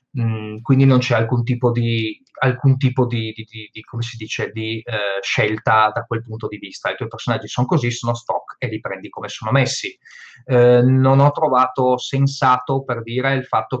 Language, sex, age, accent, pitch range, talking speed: Italian, male, 20-39, native, 115-140 Hz, 150 wpm